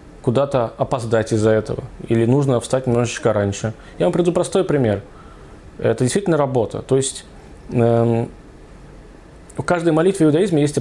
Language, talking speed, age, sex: Russian, 145 wpm, 20-39, male